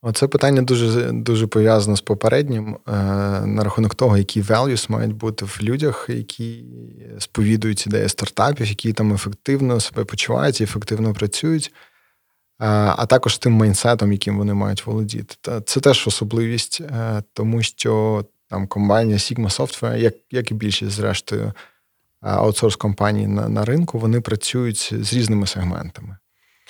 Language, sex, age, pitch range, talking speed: Ukrainian, male, 20-39, 105-125 Hz, 130 wpm